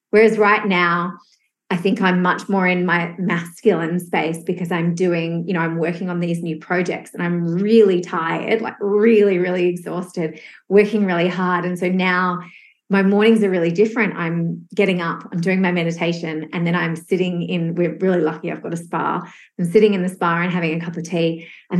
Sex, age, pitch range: female, 30-49, 170-195 Hz